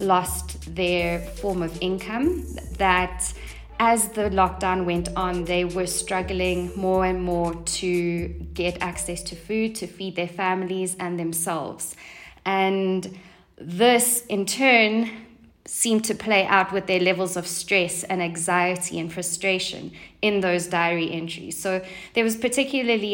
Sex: female